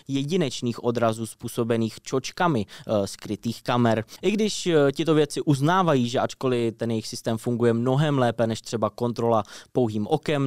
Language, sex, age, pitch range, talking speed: Czech, male, 20-39, 115-150 Hz, 145 wpm